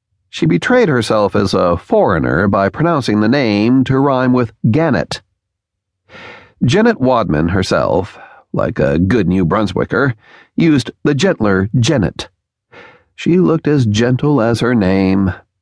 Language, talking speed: English, 125 wpm